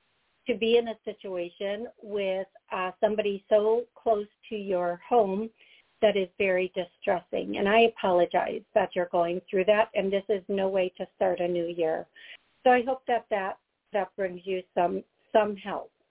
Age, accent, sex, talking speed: 60-79, American, female, 170 wpm